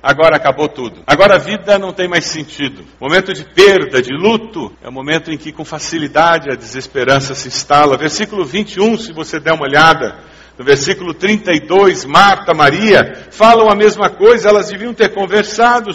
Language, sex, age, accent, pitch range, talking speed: English, male, 60-79, Brazilian, 175-230 Hz, 175 wpm